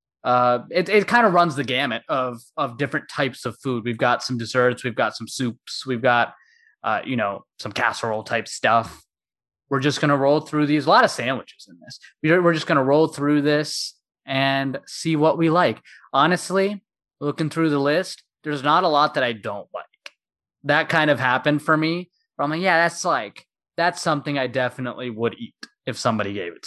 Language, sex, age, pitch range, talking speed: English, male, 20-39, 130-170 Hz, 205 wpm